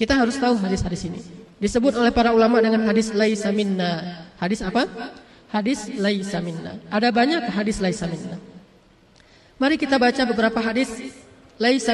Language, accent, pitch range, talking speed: English, Indonesian, 220-265 Hz, 145 wpm